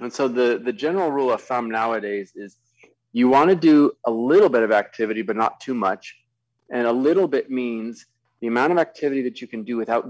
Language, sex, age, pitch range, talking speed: English, male, 30-49, 110-130 Hz, 220 wpm